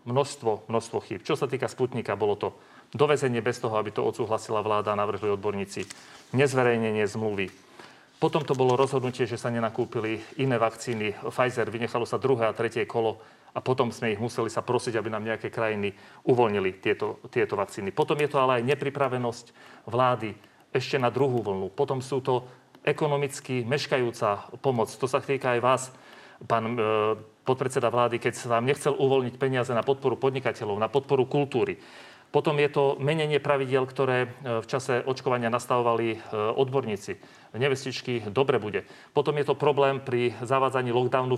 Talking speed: 160 wpm